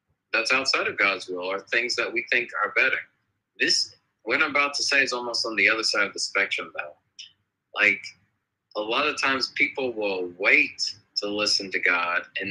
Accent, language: American, English